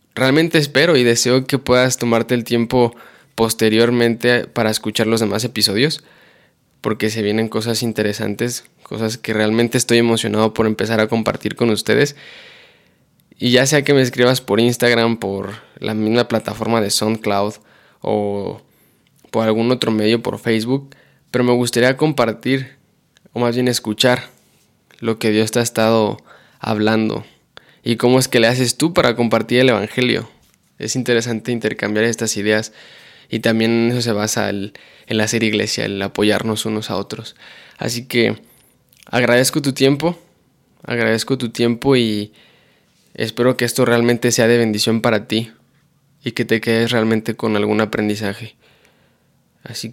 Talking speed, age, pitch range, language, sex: 150 wpm, 10-29, 110-125 Hz, Spanish, male